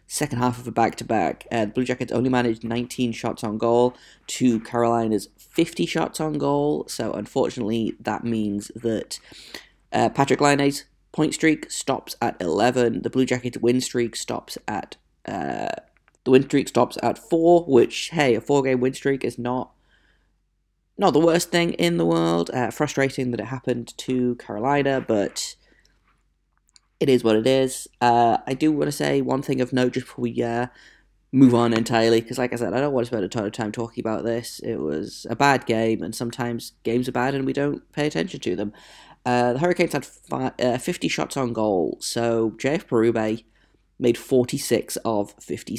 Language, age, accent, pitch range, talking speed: English, 20-39, British, 115-135 Hz, 190 wpm